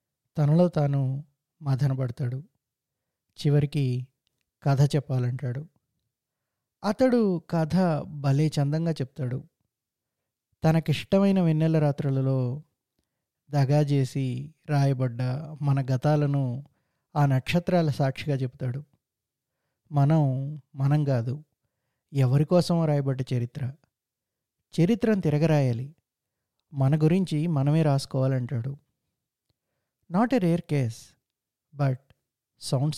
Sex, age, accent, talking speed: male, 20-39, native, 75 wpm